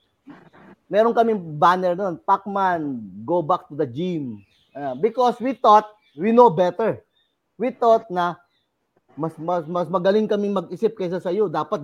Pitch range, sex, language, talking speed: 155-220 Hz, male, Filipino, 145 wpm